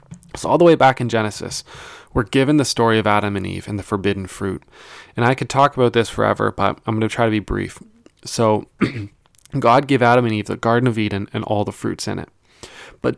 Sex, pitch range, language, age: male, 100-135 Hz, English, 20-39